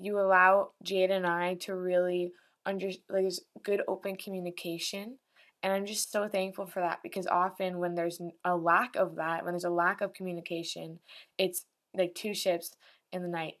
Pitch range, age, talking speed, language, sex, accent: 175-200 Hz, 10-29, 180 wpm, English, female, American